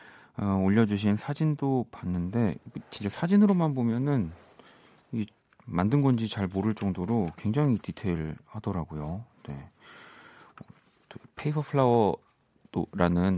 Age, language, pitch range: 40-59, Korean, 90-130 Hz